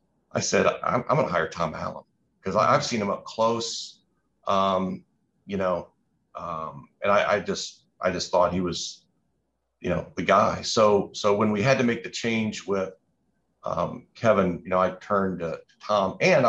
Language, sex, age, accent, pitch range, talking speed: English, male, 40-59, American, 95-130 Hz, 190 wpm